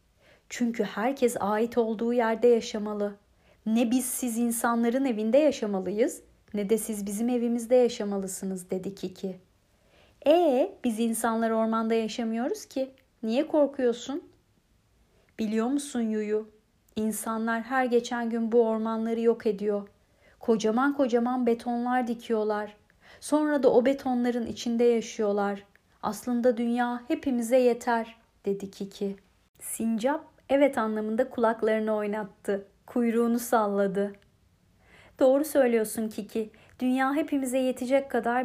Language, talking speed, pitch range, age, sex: Turkish, 110 wpm, 220-255 Hz, 30-49, female